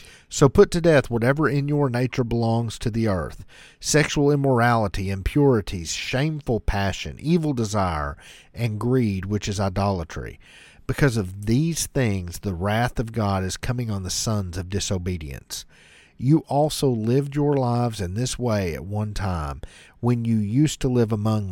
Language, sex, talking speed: English, male, 155 wpm